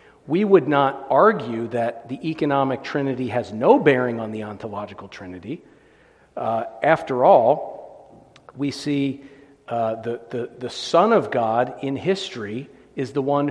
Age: 50-69